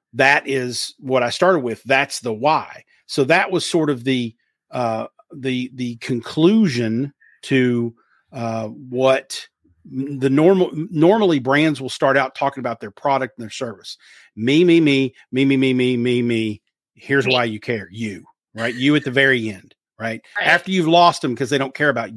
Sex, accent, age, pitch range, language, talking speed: male, American, 40-59, 120-160 Hz, English, 180 wpm